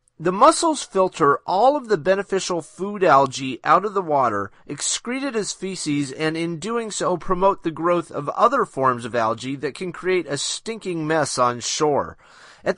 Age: 40-59